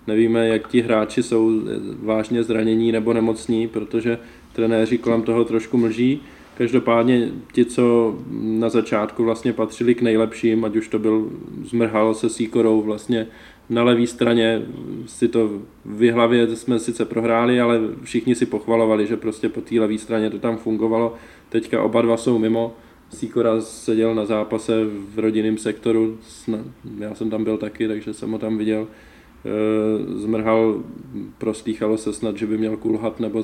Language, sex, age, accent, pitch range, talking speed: Czech, male, 20-39, native, 110-115 Hz, 155 wpm